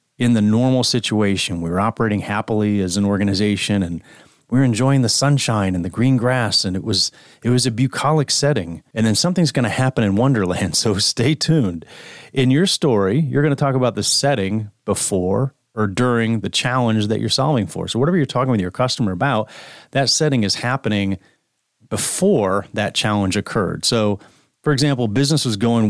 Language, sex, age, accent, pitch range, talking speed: English, male, 30-49, American, 105-135 Hz, 185 wpm